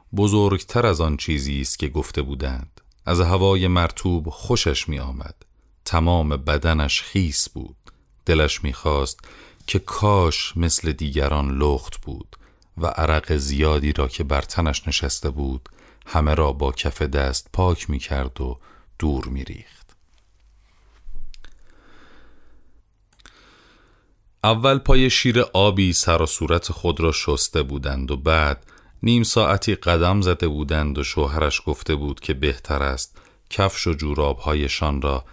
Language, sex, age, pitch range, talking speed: Persian, male, 40-59, 75-90 Hz, 130 wpm